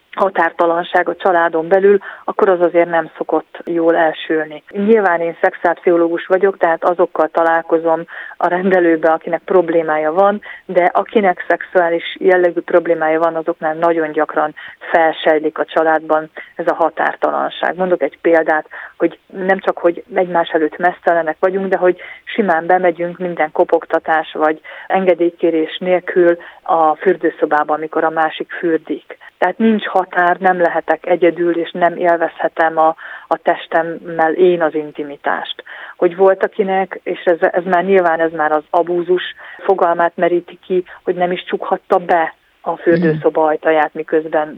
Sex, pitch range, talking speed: female, 160-185 Hz, 140 wpm